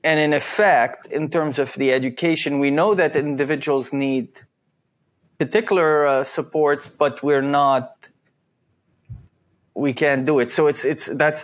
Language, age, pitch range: English, 30-49, 140-185 Hz